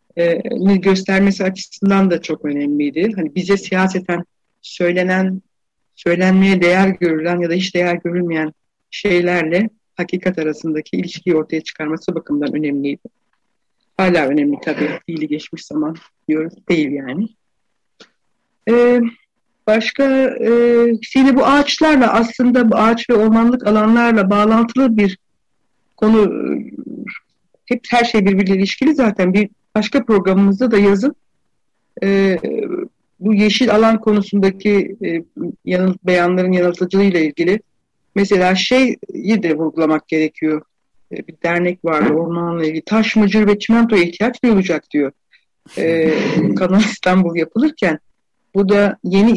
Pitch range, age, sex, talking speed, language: 170-225 Hz, 60-79, female, 115 wpm, Turkish